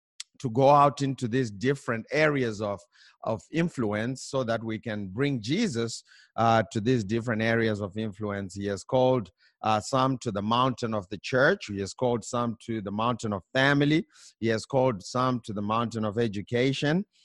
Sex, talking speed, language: male, 180 wpm, English